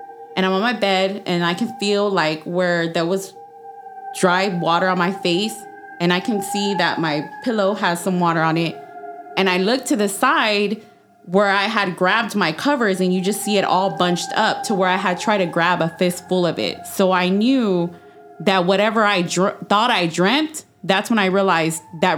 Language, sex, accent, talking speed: English, female, American, 205 wpm